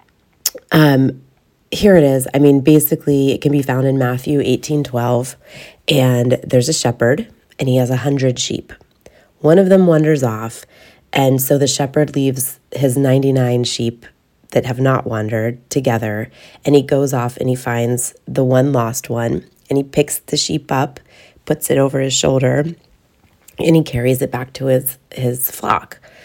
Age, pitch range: 30-49, 125-145 Hz